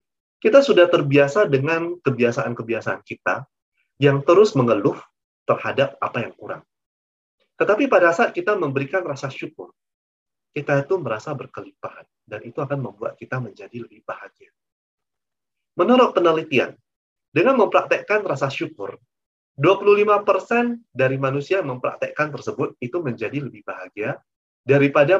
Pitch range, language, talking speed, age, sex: 125-190 Hz, Indonesian, 115 wpm, 30-49, male